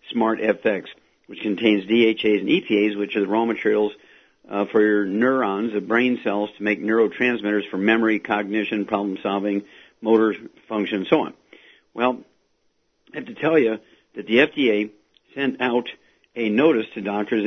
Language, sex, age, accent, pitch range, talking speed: English, male, 50-69, American, 105-125 Hz, 160 wpm